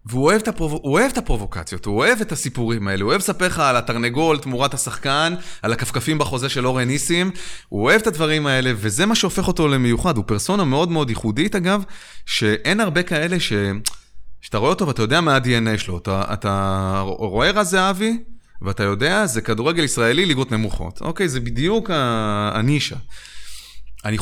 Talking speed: 175 wpm